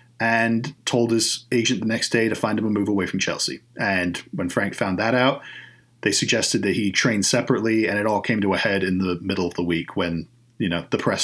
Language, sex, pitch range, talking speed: English, male, 105-140 Hz, 240 wpm